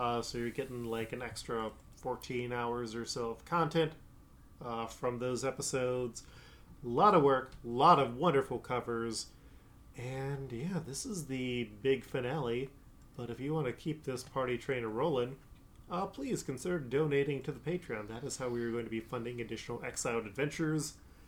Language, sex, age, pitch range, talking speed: English, male, 30-49, 115-145 Hz, 175 wpm